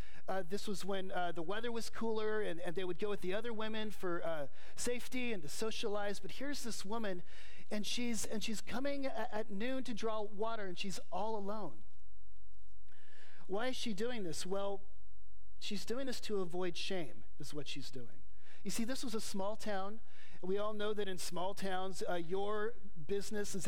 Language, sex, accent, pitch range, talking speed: English, male, American, 165-215 Hz, 200 wpm